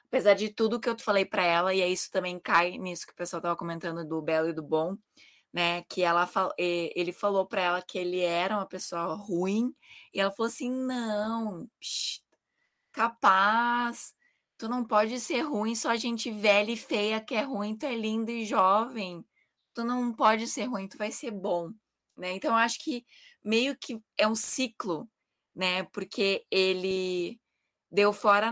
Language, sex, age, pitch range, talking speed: Portuguese, female, 20-39, 185-225 Hz, 185 wpm